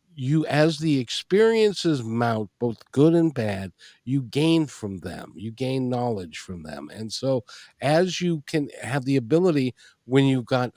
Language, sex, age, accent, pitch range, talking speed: English, male, 50-69, American, 110-150 Hz, 160 wpm